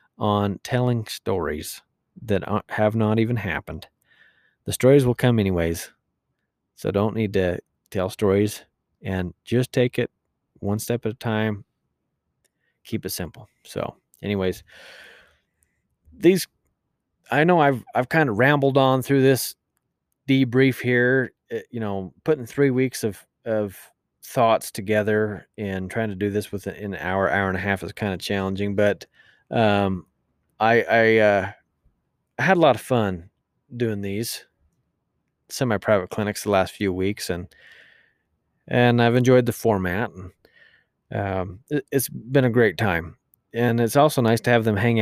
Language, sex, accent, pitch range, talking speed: English, male, American, 95-120 Hz, 150 wpm